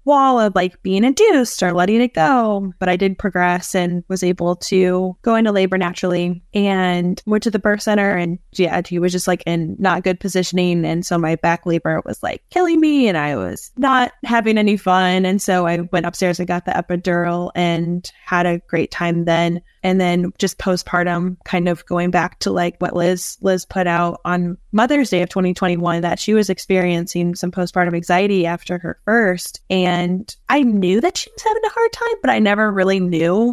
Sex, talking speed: female, 205 wpm